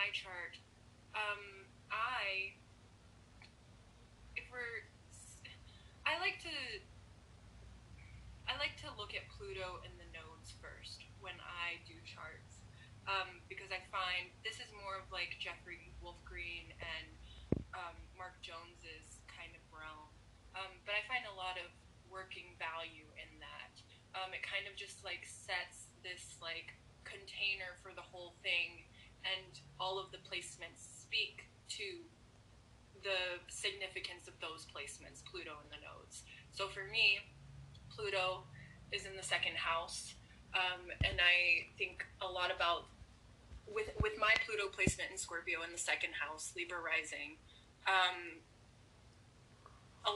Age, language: 20-39, English